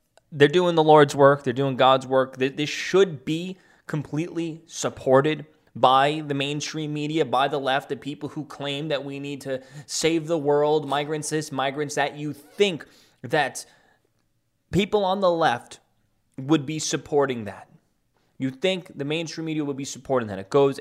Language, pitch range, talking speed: English, 125-160 Hz, 165 wpm